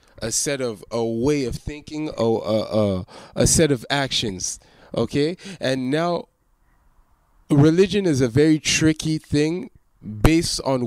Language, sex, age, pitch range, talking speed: English, male, 20-39, 120-155 Hz, 125 wpm